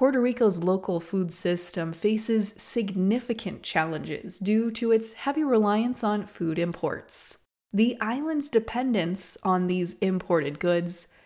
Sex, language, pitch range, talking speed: female, English, 180-235 Hz, 125 wpm